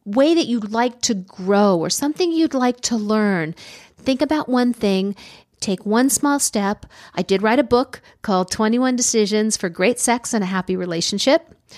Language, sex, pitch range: English, female, 185-235 Hz